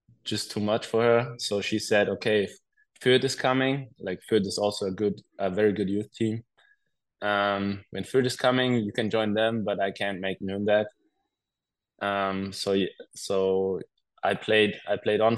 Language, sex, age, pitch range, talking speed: English, male, 20-39, 100-115 Hz, 180 wpm